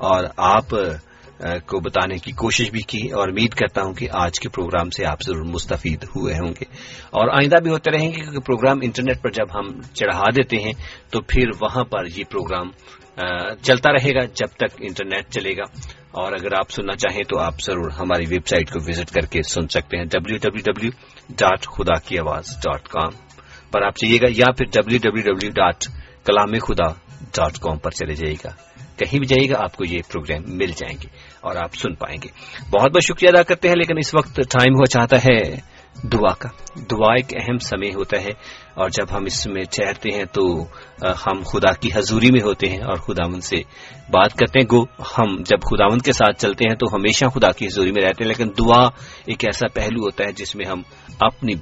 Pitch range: 100-130 Hz